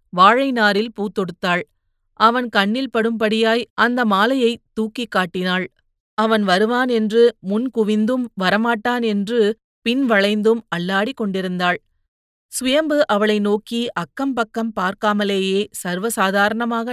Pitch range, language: 190-235 Hz, Tamil